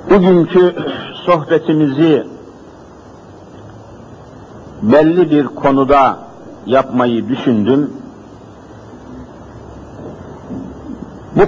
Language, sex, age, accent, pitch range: Turkish, male, 60-79, native, 125-155 Hz